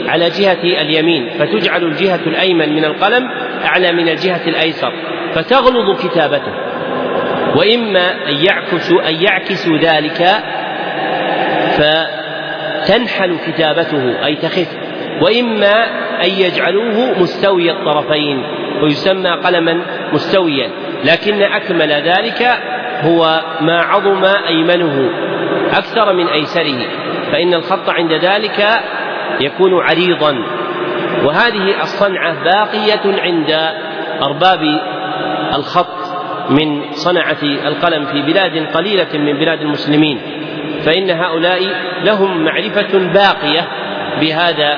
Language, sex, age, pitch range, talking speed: Arabic, male, 40-59, 155-185 Hz, 90 wpm